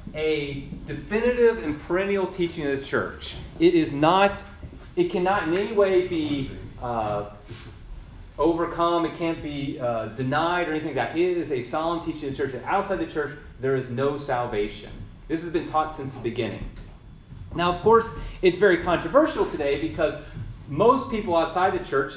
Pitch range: 135-185 Hz